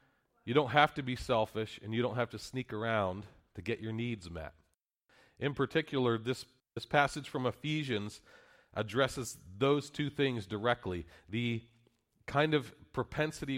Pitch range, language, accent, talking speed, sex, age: 110-140 Hz, English, American, 150 wpm, male, 40-59